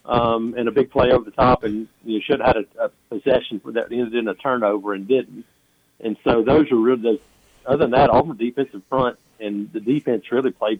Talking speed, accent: 215 wpm, American